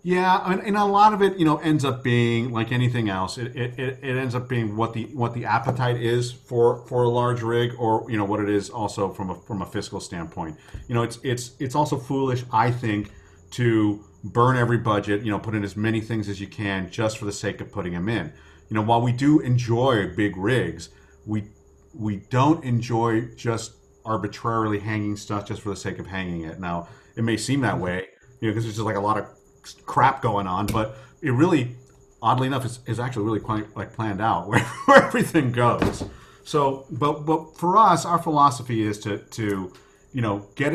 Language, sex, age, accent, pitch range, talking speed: English, male, 40-59, American, 100-125 Hz, 215 wpm